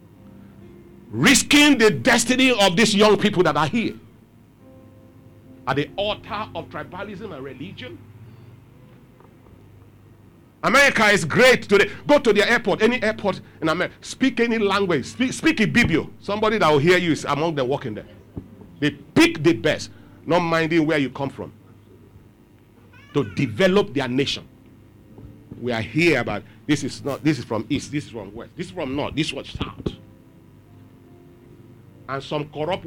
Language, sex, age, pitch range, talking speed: English, male, 50-69, 110-175 Hz, 155 wpm